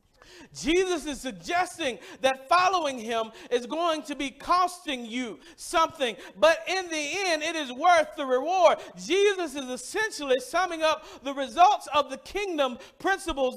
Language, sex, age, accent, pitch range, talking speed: English, male, 40-59, American, 295-365 Hz, 145 wpm